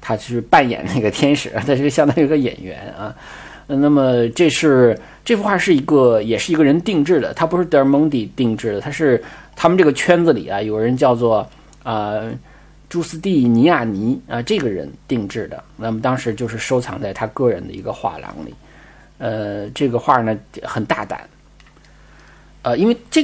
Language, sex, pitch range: Chinese, male, 115-155 Hz